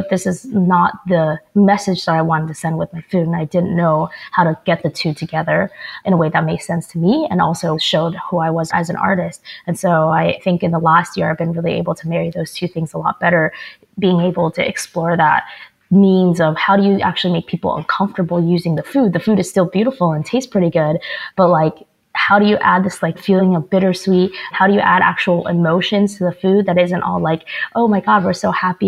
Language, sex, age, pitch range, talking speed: English, female, 20-39, 165-185 Hz, 245 wpm